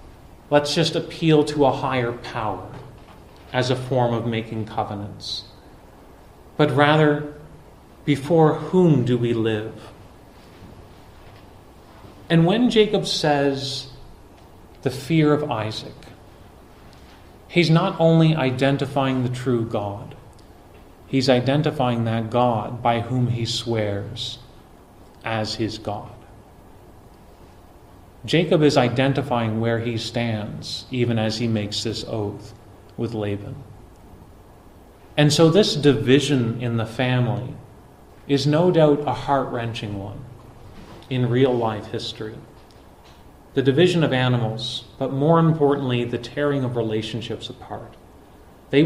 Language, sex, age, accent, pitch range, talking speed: English, male, 30-49, American, 105-140 Hz, 110 wpm